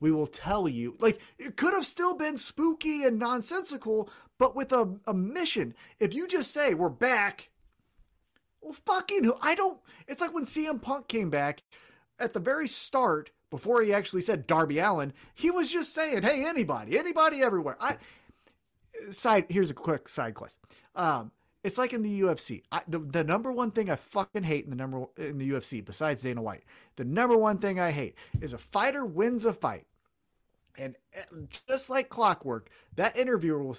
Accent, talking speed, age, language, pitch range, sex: American, 185 wpm, 30-49, English, 160-260 Hz, male